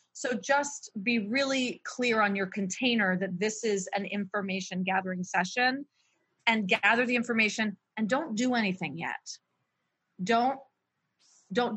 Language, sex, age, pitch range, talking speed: English, female, 30-49, 195-235 Hz, 135 wpm